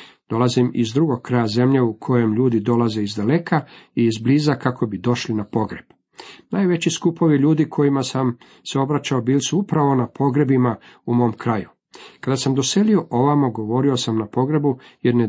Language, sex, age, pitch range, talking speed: Croatian, male, 50-69, 115-140 Hz, 170 wpm